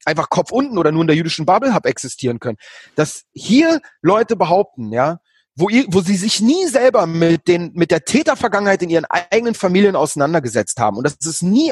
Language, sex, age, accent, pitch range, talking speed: German, male, 30-49, German, 160-220 Hz, 200 wpm